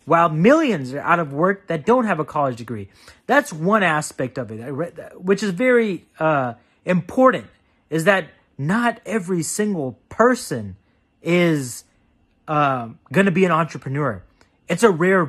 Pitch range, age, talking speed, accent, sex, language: 150-200 Hz, 30-49, 145 wpm, American, male, English